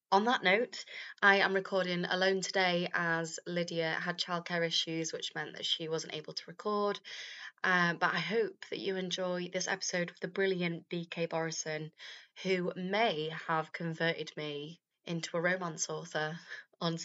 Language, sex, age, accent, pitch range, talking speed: English, female, 20-39, British, 170-210 Hz, 160 wpm